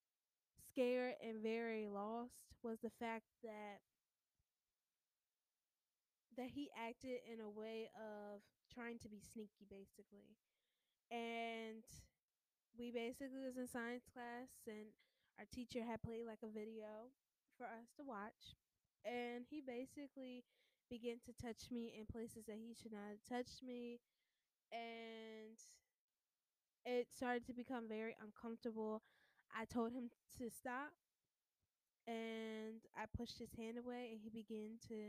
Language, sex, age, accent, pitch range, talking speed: English, female, 10-29, American, 220-245 Hz, 130 wpm